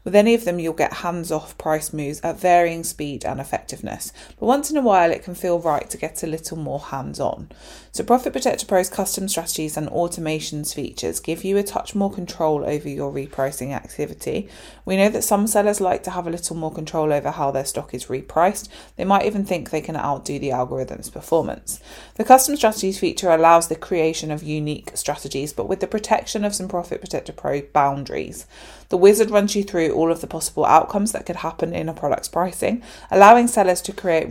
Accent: British